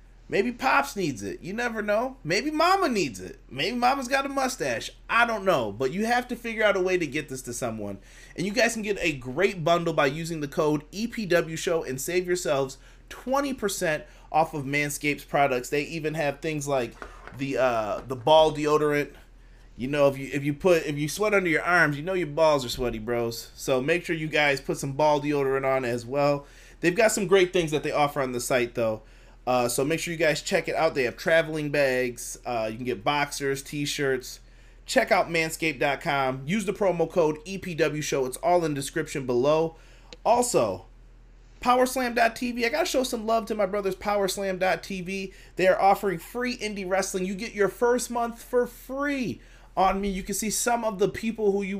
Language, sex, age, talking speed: English, male, 30-49, 205 wpm